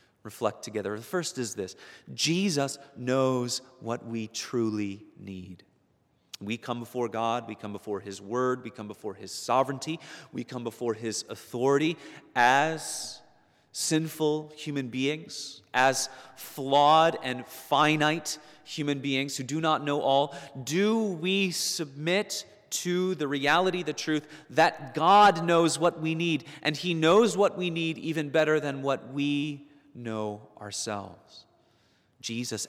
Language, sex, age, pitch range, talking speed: English, male, 30-49, 115-170 Hz, 135 wpm